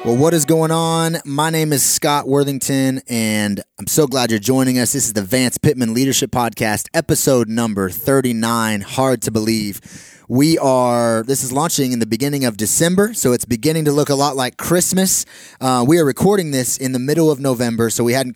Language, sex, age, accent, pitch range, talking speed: English, male, 30-49, American, 115-140 Hz, 205 wpm